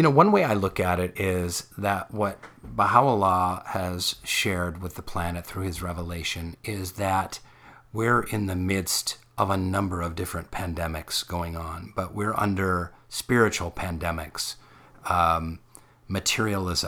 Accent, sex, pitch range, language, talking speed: American, male, 90-115 Hz, English, 145 wpm